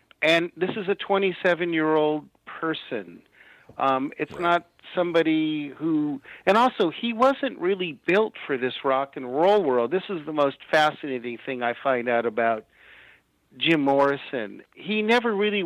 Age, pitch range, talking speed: 50-69, 130-180 Hz, 145 wpm